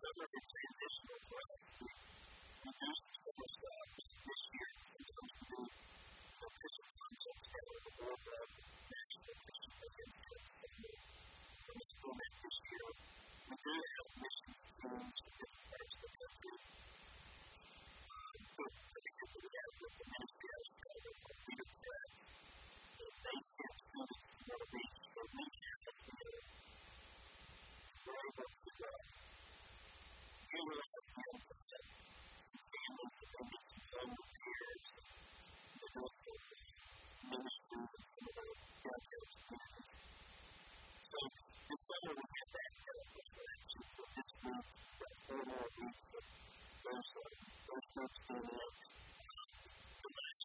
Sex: female